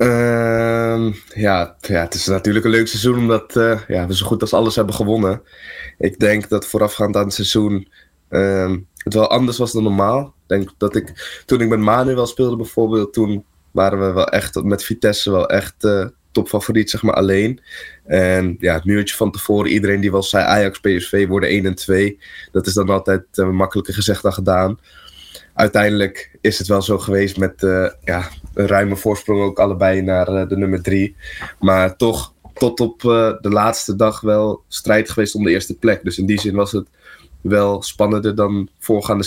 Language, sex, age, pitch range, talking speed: Dutch, male, 20-39, 95-105 Hz, 190 wpm